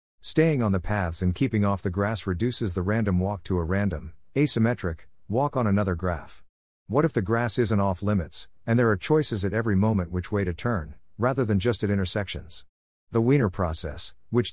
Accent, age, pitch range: American, 50-69, 90-115 Hz